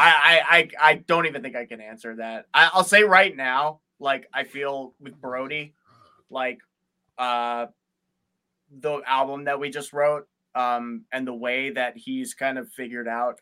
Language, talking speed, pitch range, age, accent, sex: English, 170 wpm, 115-135 Hz, 20-39, American, male